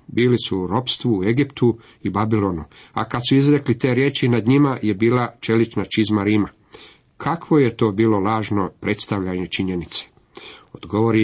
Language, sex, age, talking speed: Croatian, male, 50-69, 150 wpm